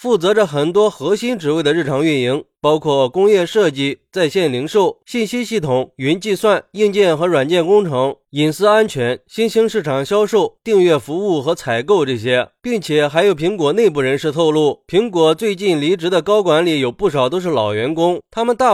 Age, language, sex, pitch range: 20-39, Chinese, male, 140-205 Hz